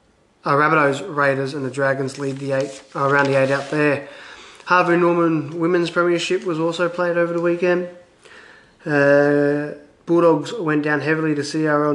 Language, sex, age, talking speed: English, male, 20-39, 160 wpm